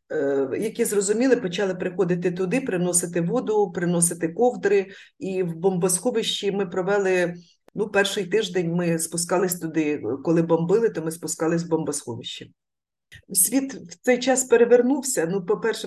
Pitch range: 180-215 Hz